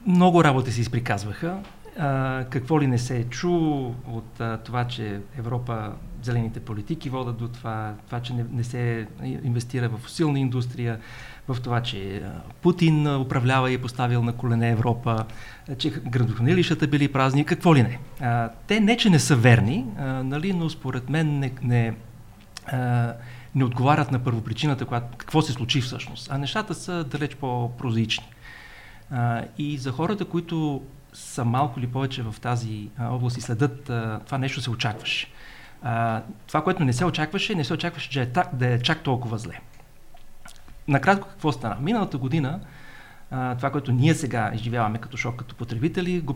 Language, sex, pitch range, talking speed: Bulgarian, male, 115-145 Hz, 165 wpm